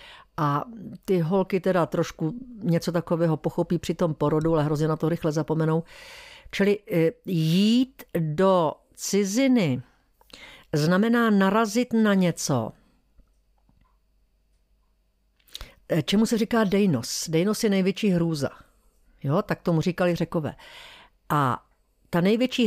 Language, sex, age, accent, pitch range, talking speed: Czech, female, 50-69, native, 170-235 Hz, 110 wpm